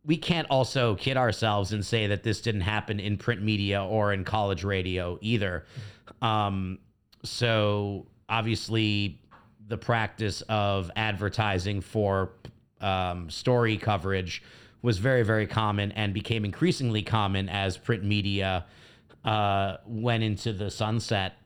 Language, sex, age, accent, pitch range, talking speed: English, male, 30-49, American, 100-120 Hz, 130 wpm